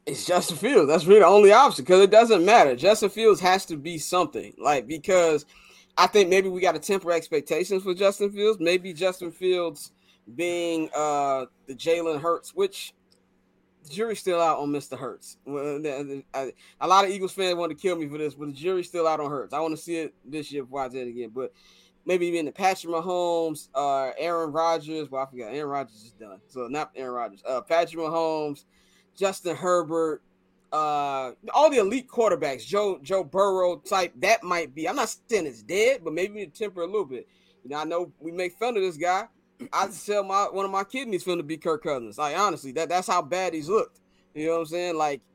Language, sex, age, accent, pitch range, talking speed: English, male, 20-39, American, 150-195 Hz, 220 wpm